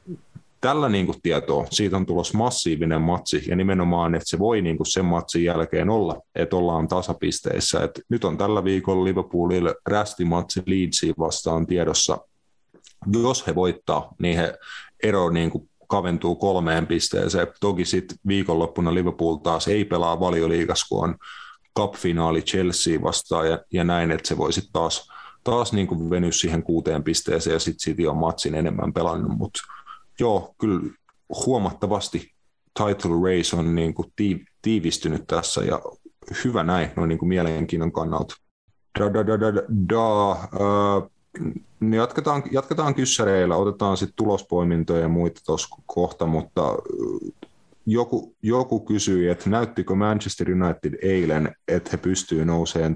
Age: 30-49